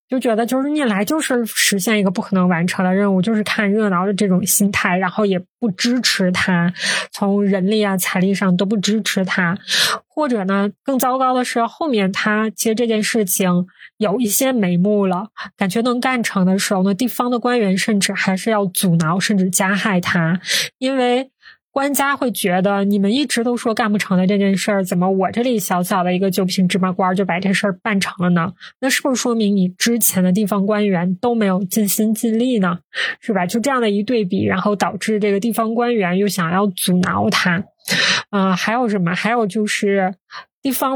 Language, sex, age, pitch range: Chinese, female, 20-39, 190-230 Hz